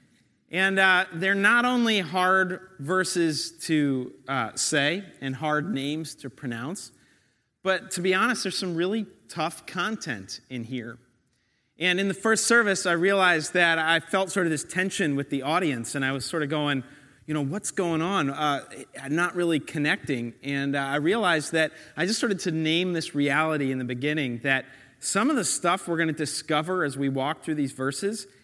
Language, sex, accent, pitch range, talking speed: English, male, American, 145-185 Hz, 190 wpm